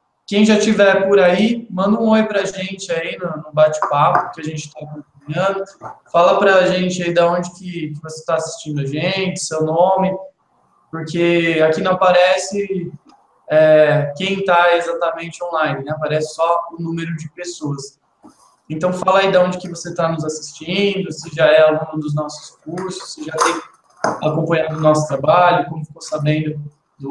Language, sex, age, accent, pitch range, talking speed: English, male, 20-39, Brazilian, 155-185 Hz, 165 wpm